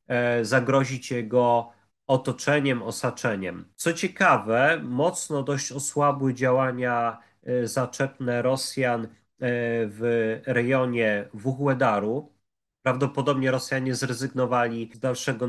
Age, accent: 30-49, native